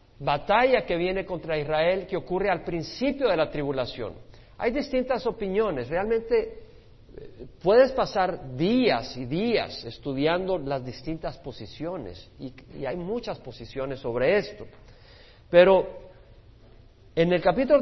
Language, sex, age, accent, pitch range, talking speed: Spanish, male, 50-69, Mexican, 155-205 Hz, 120 wpm